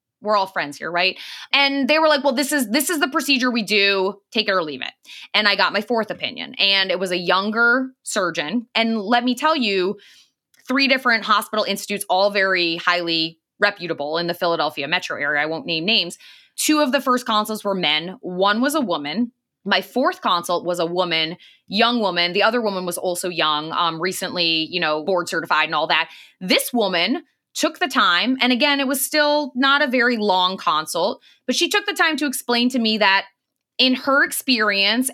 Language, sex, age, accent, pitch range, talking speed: English, female, 20-39, American, 185-260 Hz, 205 wpm